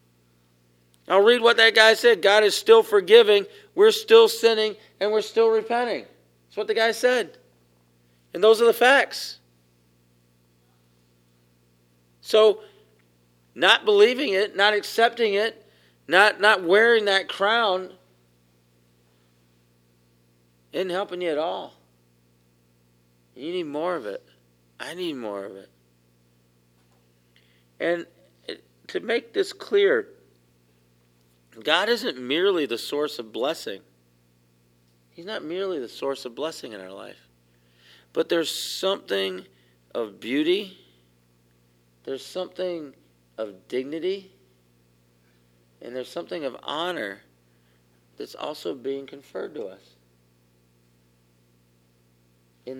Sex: male